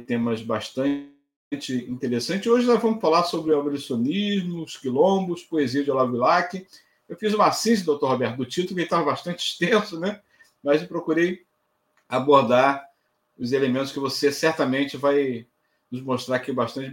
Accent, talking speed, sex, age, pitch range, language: Brazilian, 150 wpm, male, 50-69, 125-165 Hz, Portuguese